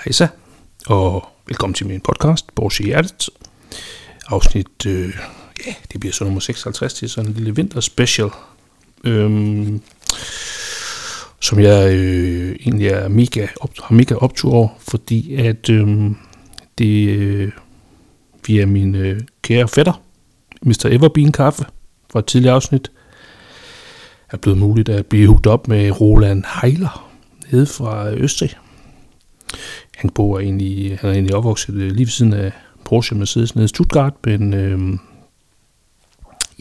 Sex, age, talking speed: male, 60-79, 130 wpm